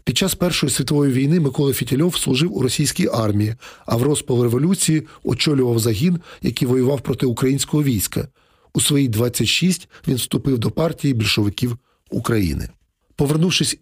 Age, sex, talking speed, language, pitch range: 40-59, male, 135 wpm, Ukrainian, 130-155 Hz